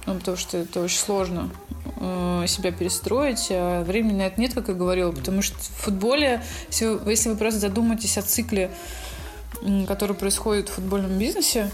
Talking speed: 160 wpm